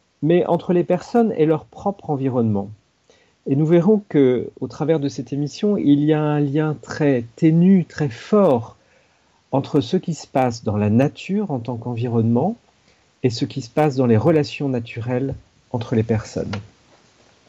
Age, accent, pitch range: 50-69, French, 125-175 Hz